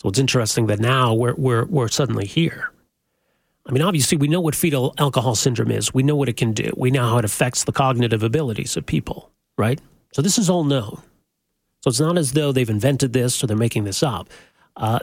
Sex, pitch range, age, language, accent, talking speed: male, 120-155 Hz, 40-59, English, American, 225 wpm